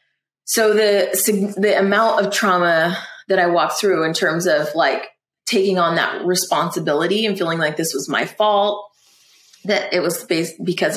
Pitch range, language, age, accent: 165-195 Hz, English, 20-39, American